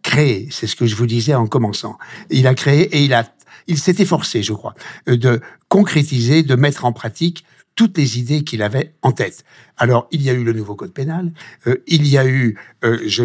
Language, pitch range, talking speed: French, 120-160 Hz, 220 wpm